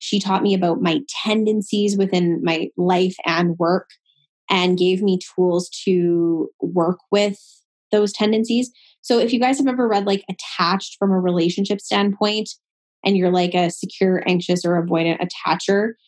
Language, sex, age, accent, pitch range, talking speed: English, female, 10-29, American, 170-205 Hz, 155 wpm